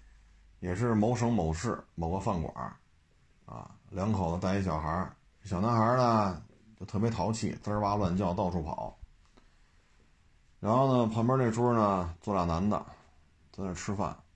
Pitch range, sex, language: 80-110 Hz, male, Chinese